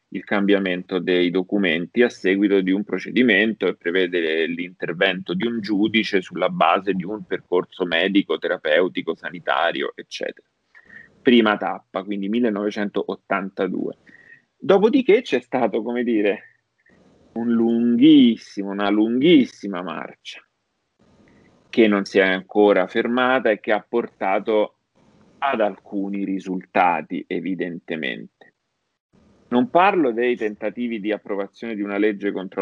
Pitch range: 100-120 Hz